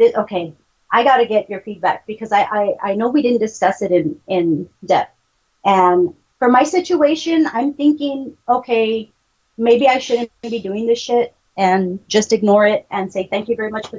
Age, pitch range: 40-59, 190-235 Hz